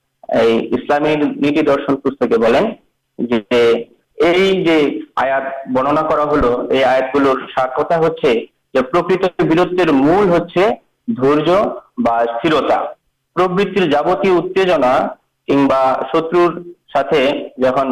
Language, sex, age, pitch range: Urdu, male, 50-69, 135-175 Hz